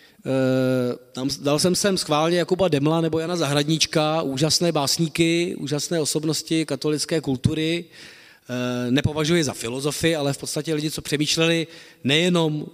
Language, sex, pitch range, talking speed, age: Czech, male, 145-180 Hz, 130 wpm, 40-59